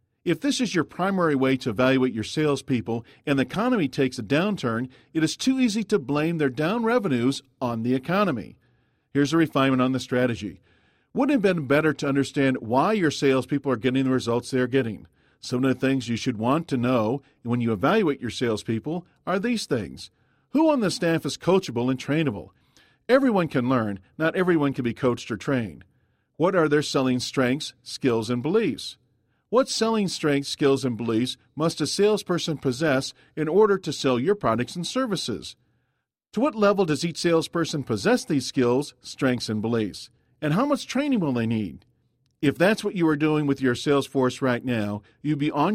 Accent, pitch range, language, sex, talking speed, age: American, 125-165 Hz, English, male, 190 wpm, 50-69